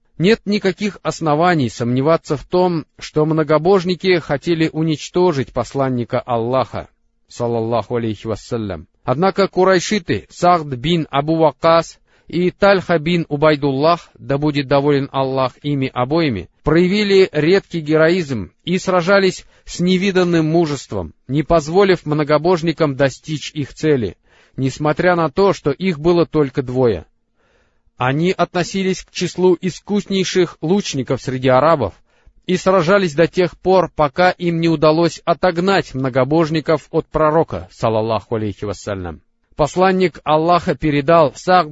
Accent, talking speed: native, 115 wpm